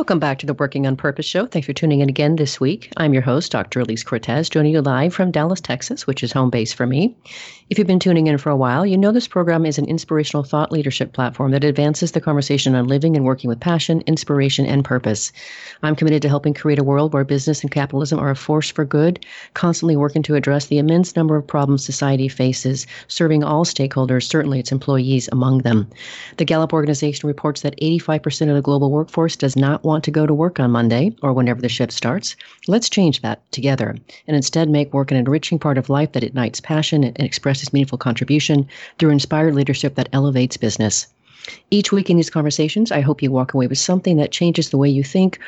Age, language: 40-59, English